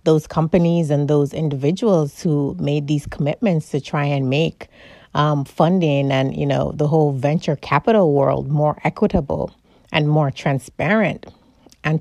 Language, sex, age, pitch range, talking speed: English, female, 30-49, 145-175 Hz, 145 wpm